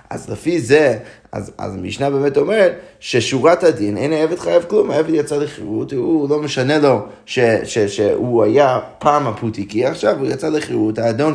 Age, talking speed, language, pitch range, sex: 20-39, 175 wpm, Hebrew, 115-160 Hz, male